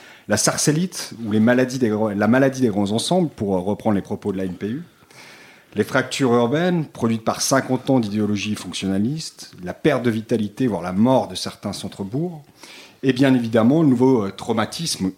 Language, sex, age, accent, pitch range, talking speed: French, male, 40-59, French, 100-130 Hz, 160 wpm